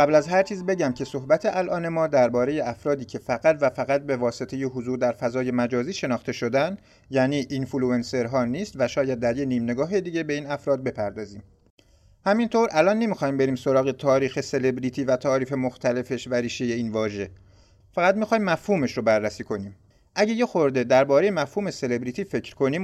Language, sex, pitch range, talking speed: Persian, male, 125-185 Hz, 175 wpm